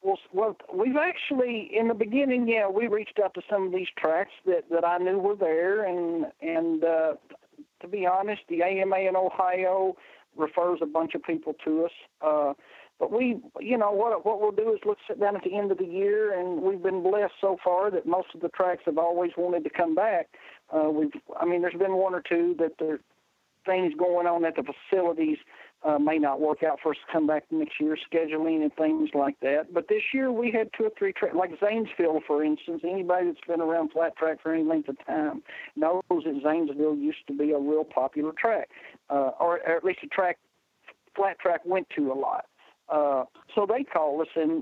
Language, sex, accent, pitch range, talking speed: English, male, American, 160-205 Hz, 215 wpm